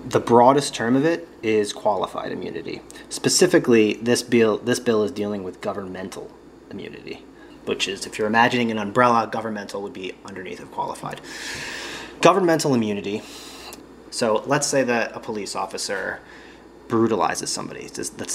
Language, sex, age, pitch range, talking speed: English, male, 30-49, 105-120 Hz, 140 wpm